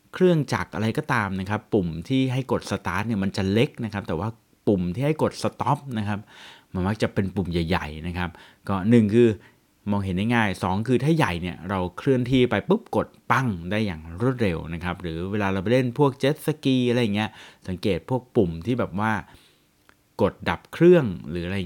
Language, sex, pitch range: Thai, male, 90-120 Hz